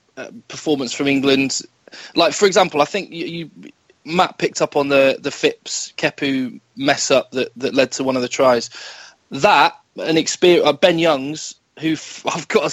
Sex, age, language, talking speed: male, 20-39, English, 190 wpm